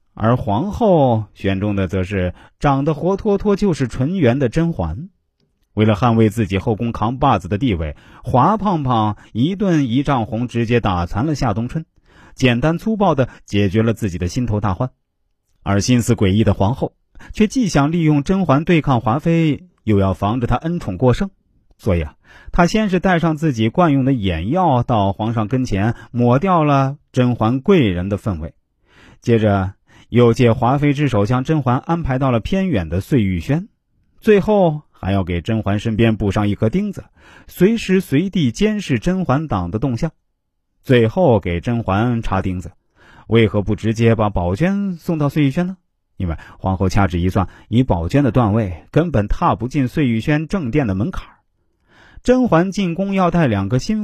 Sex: male